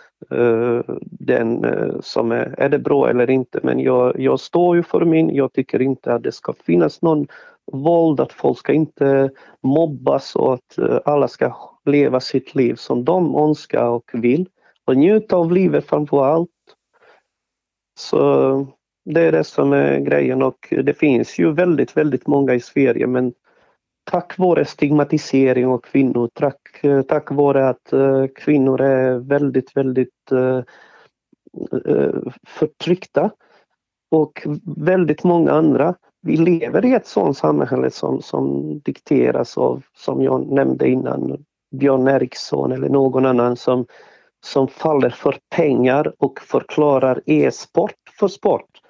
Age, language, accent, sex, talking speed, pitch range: 40-59, Swedish, native, male, 140 wpm, 125-160 Hz